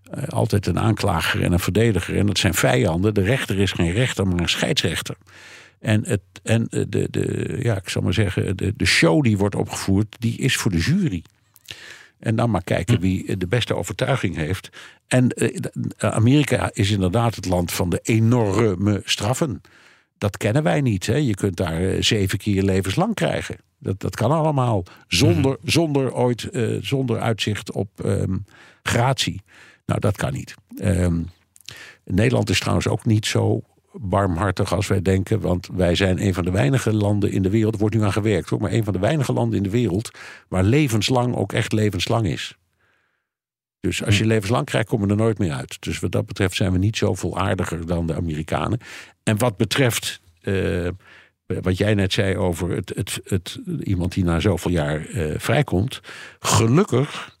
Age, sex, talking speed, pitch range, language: 50-69, male, 180 wpm, 95-115 Hz, Dutch